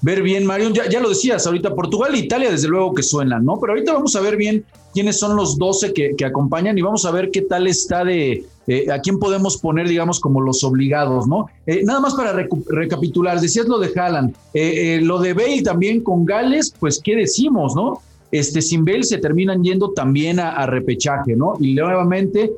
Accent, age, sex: Mexican, 40-59, male